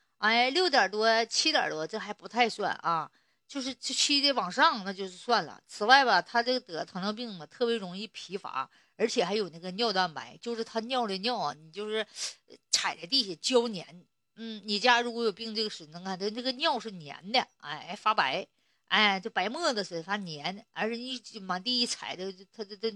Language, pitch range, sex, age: Chinese, 190-250 Hz, female, 50-69